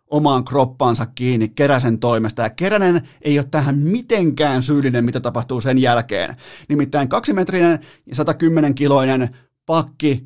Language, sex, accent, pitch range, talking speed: Finnish, male, native, 125-175 Hz, 115 wpm